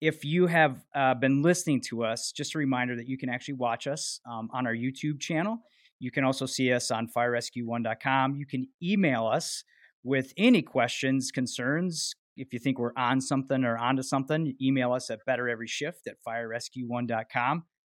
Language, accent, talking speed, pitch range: English, American, 175 wpm, 125-150 Hz